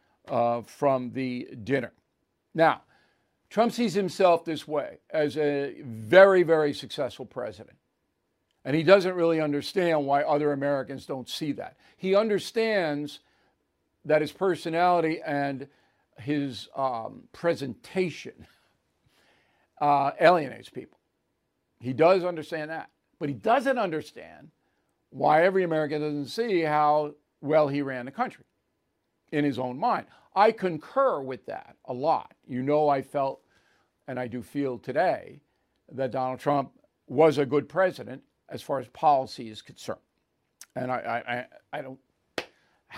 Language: English